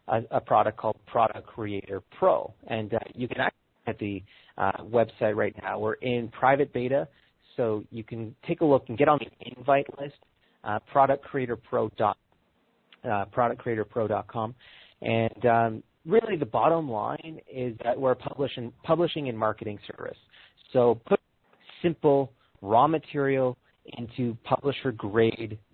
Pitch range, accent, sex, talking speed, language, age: 110-140 Hz, American, male, 135 wpm, English, 30-49